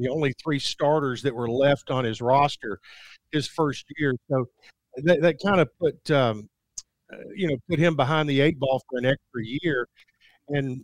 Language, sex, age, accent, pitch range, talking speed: English, male, 50-69, American, 130-155 Hz, 185 wpm